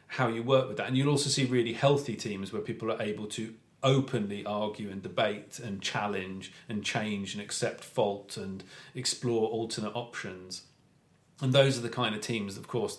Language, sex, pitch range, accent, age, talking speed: English, male, 105-130 Hz, British, 30-49, 190 wpm